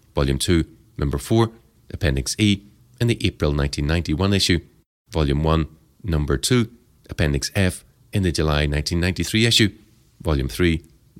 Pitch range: 75-100 Hz